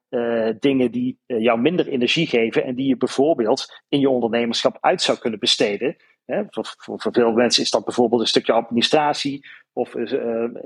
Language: Dutch